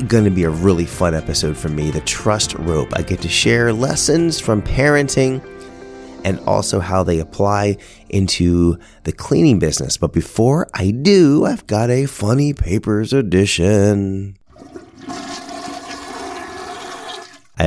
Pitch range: 85-120 Hz